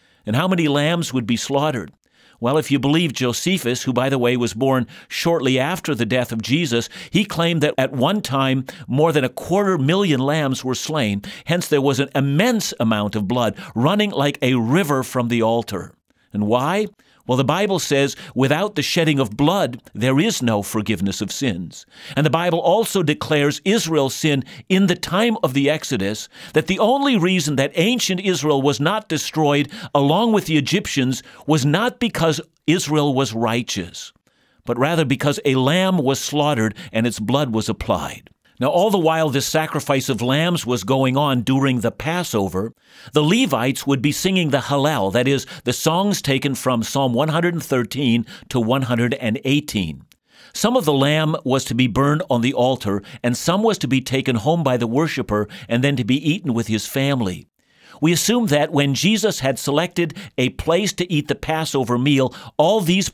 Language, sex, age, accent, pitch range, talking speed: English, male, 50-69, American, 125-165 Hz, 180 wpm